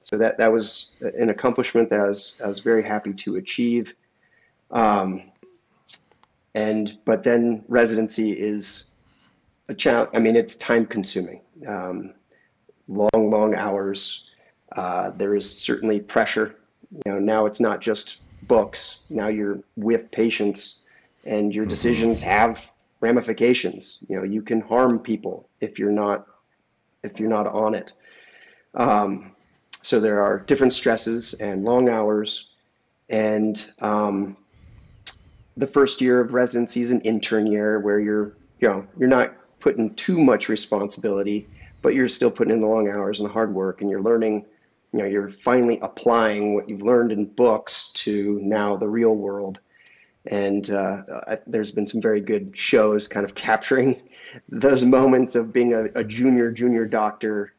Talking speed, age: 155 wpm, 30-49